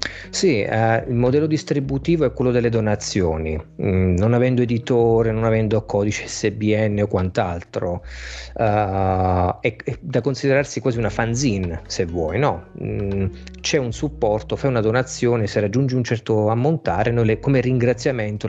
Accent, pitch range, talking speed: native, 100-125 Hz, 150 wpm